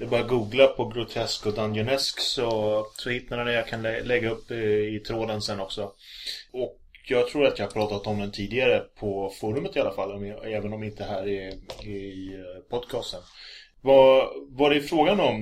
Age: 30-49